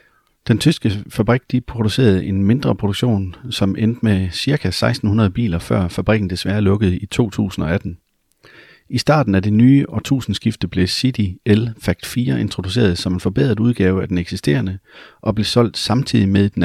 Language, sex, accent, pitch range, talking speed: Danish, male, native, 95-115 Hz, 160 wpm